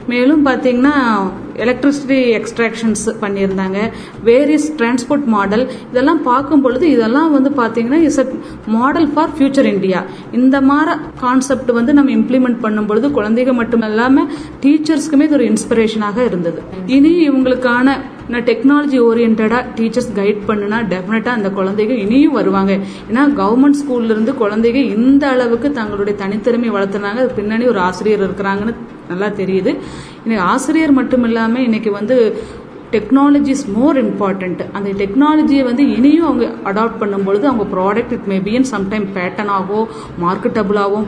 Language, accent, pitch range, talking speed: Tamil, native, 205-265 Hz, 110 wpm